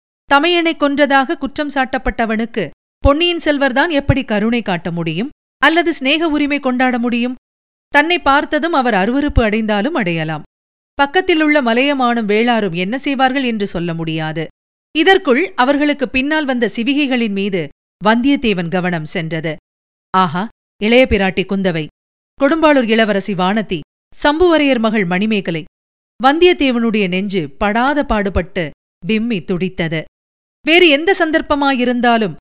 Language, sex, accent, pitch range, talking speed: Tamil, female, native, 200-280 Hz, 105 wpm